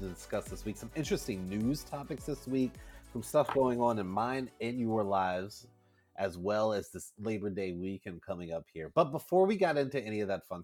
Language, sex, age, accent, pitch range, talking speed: English, male, 30-49, American, 95-135 Hz, 210 wpm